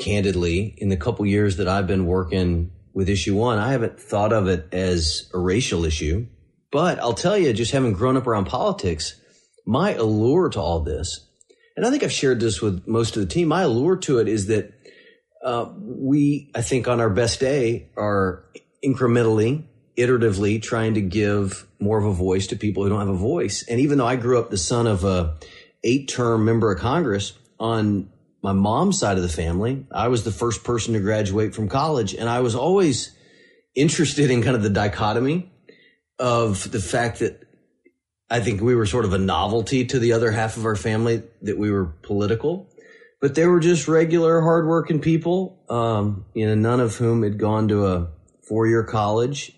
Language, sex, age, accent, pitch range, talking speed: English, male, 30-49, American, 100-130 Hz, 195 wpm